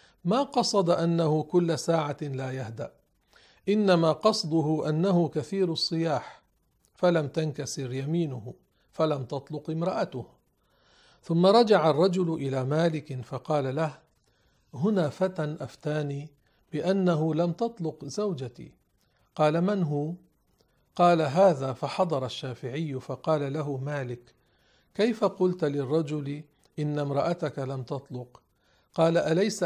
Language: Arabic